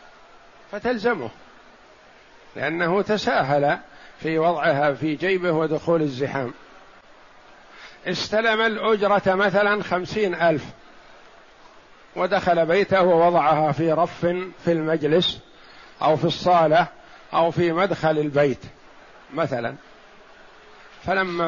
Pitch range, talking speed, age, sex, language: 160-200 Hz, 85 wpm, 50-69, male, Arabic